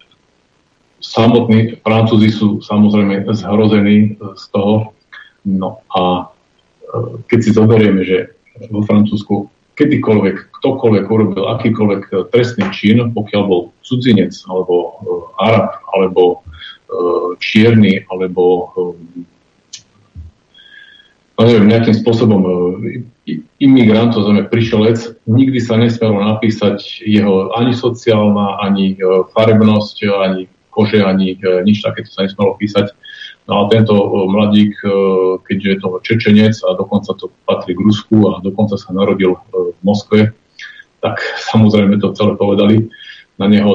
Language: Slovak